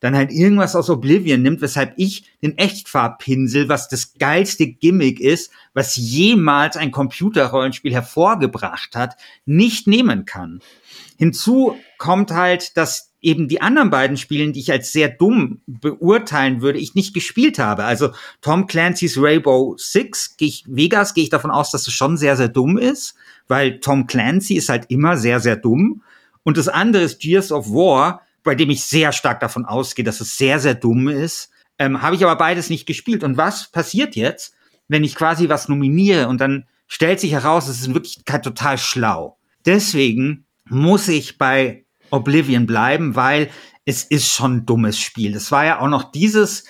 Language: German